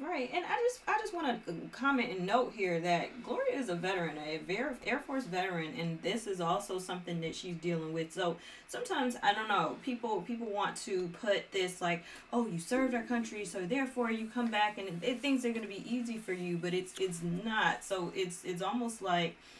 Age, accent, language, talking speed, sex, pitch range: 20-39, American, English, 215 wpm, female, 165-220 Hz